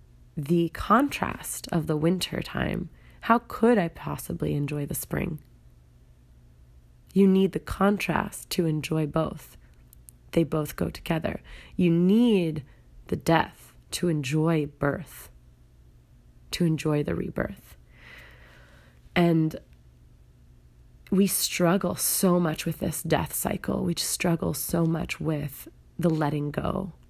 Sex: female